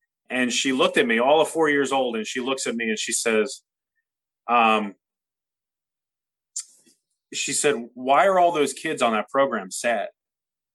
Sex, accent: male, American